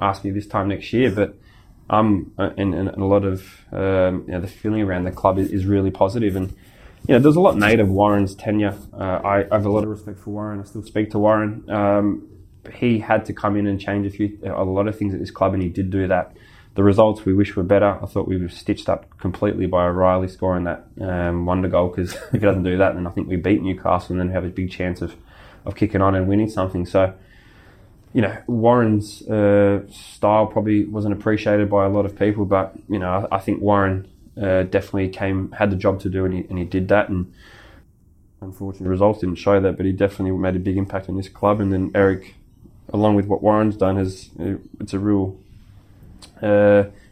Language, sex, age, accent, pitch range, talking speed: English, male, 20-39, Australian, 95-105 Hz, 230 wpm